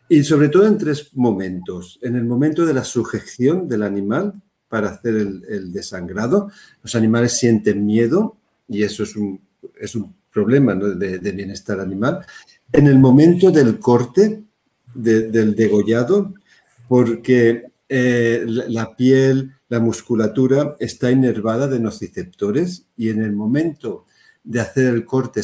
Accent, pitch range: Spanish, 110-150 Hz